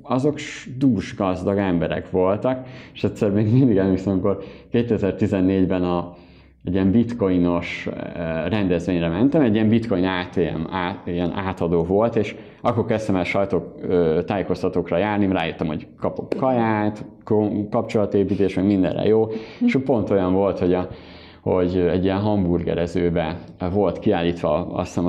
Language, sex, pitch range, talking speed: Hungarian, male, 90-120 Hz, 125 wpm